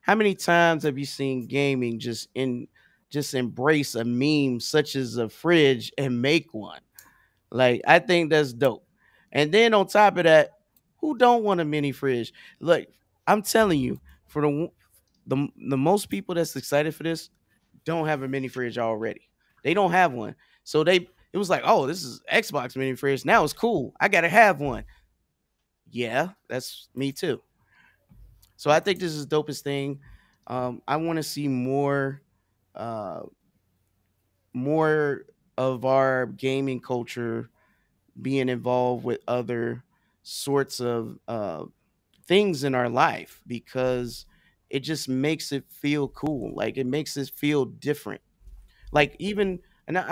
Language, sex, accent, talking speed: English, male, American, 155 wpm